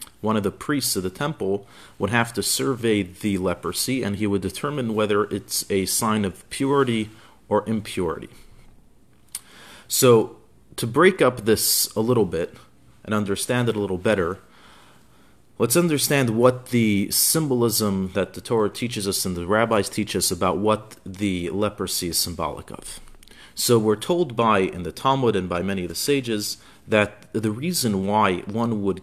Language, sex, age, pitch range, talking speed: English, male, 40-59, 95-110 Hz, 165 wpm